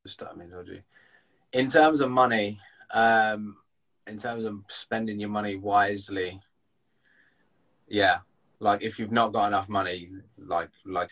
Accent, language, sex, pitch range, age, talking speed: British, English, male, 100-120 Hz, 20-39, 120 wpm